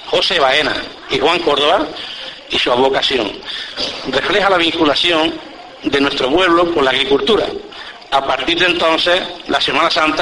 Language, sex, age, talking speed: Spanish, male, 60-79, 140 wpm